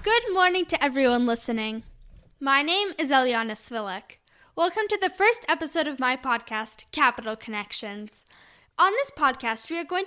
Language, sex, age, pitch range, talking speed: English, female, 10-29, 245-360 Hz, 155 wpm